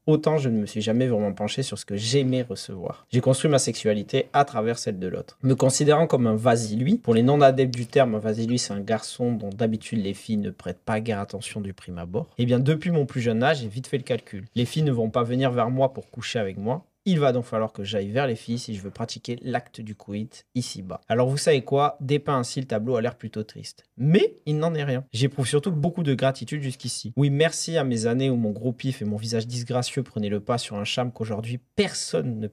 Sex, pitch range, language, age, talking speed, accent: male, 110-130 Hz, French, 30-49, 250 wpm, French